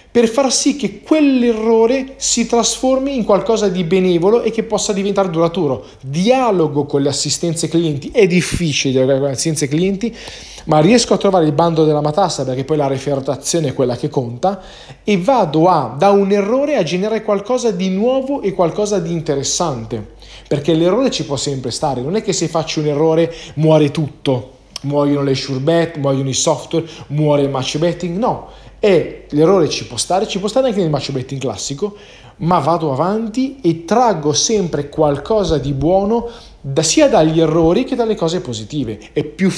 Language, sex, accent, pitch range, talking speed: Italian, male, native, 140-200 Hz, 180 wpm